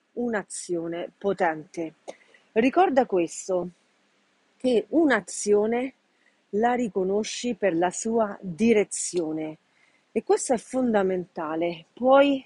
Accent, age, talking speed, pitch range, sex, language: native, 40-59, 80 wpm, 185-250 Hz, female, Italian